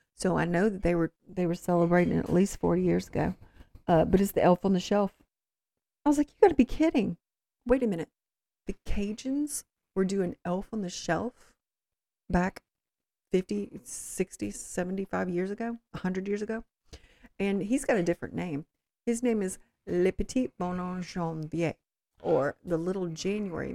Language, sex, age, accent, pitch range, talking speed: English, female, 40-59, American, 165-200 Hz, 165 wpm